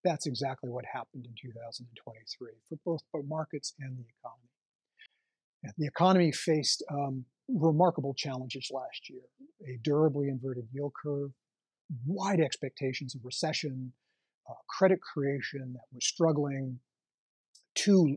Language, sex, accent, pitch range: English, male, American, 130-165 Hz